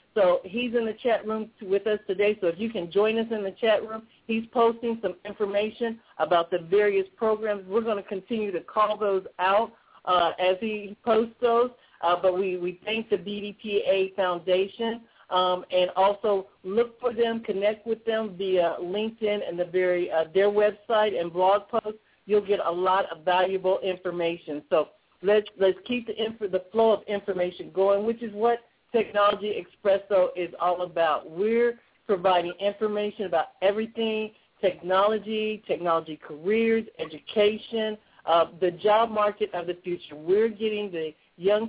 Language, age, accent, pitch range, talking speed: English, 50-69, American, 185-220 Hz, 165 wpm